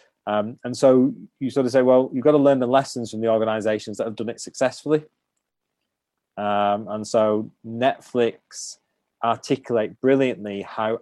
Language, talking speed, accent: English, 160 wpm, British